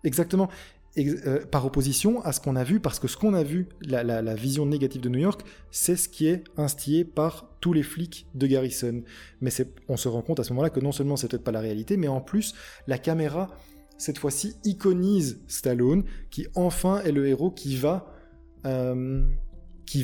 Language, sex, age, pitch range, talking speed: French, male, 20-39, 120-155 Hz, 205 wpm